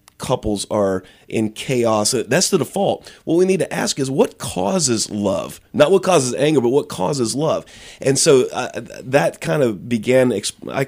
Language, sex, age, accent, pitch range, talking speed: English, male, 30-49, American, 115-155 Hz, 175 wpm